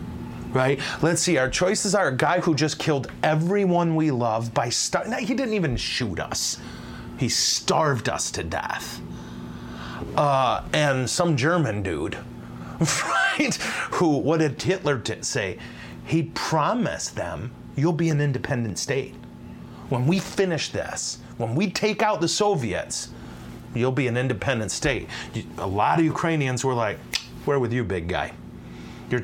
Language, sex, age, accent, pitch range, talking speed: English, male, 30-49, American, 100-155 Hz, 150 wpm